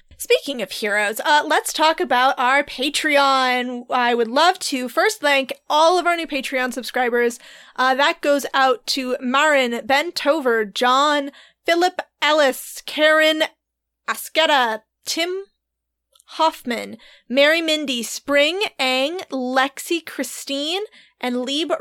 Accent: American